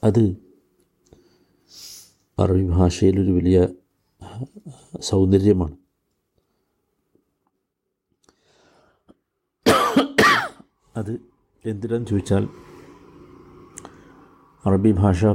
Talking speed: 40 wpm